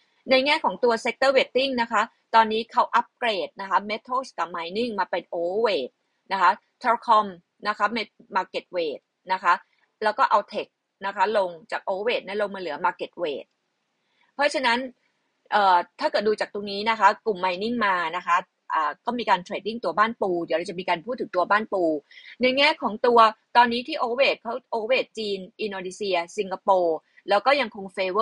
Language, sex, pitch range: Thai, female, 195-255 Hz